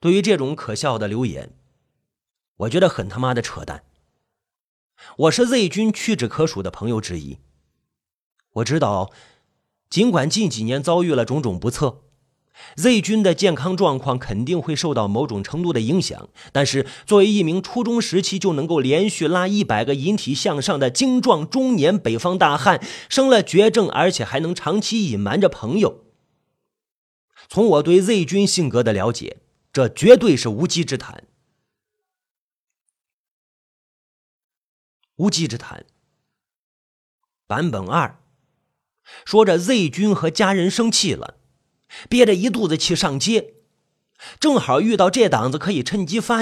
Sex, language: male, Chinese